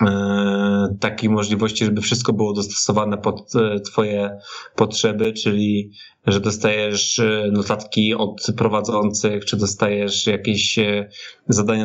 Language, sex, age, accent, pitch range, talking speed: Polish, male, 20-39, native, 100-115 Hz, 95 wpm